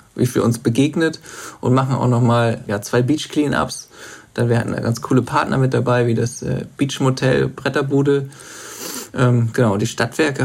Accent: German